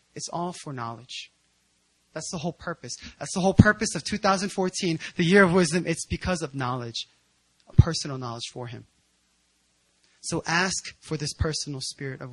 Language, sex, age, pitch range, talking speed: English, male, 20-39, 120-180 Hz, 160 wpm